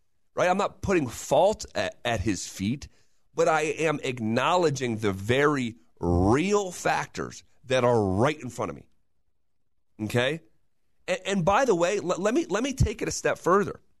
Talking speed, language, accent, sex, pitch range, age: 170 wpm, English, American, male, 100-165 Hz, 30-49